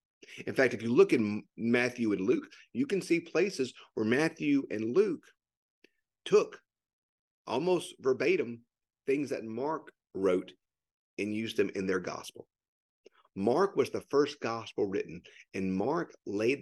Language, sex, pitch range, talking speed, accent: English, male, 105-165 Hz, 140 wpm, American